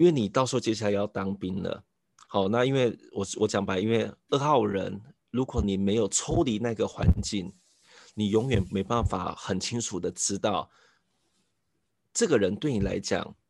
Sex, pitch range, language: male, 95-120 Hz, Chinese